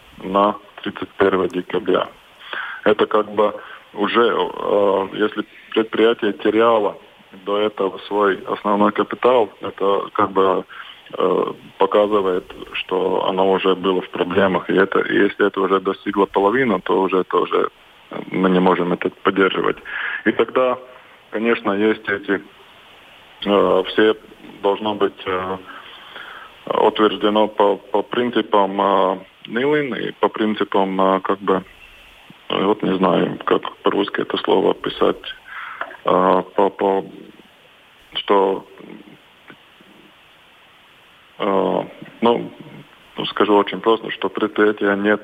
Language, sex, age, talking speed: Russian, male, 20-39, 110 wpm